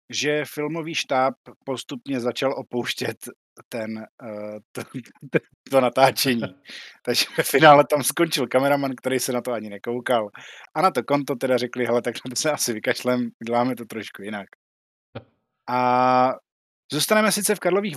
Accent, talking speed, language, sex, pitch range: native, 145 wpm, Czech, male, 125-165 Hz